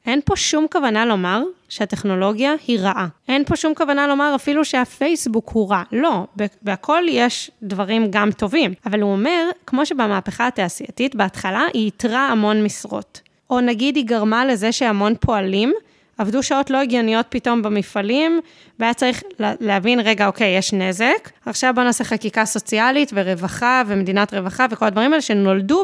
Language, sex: Hebrew, female